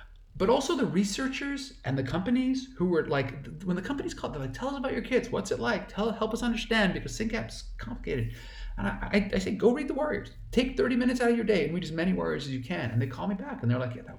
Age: 40-59